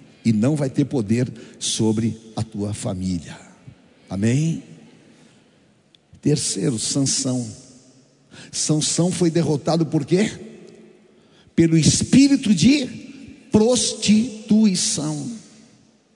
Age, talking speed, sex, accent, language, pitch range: 60-79, 80 wpm, male, Brazilian, Portuguese, 140-225 Hz